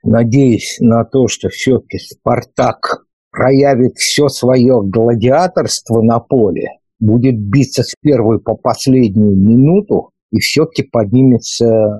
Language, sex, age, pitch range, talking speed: Russian, male, 50-69, 110-135 Hz, 110 wpm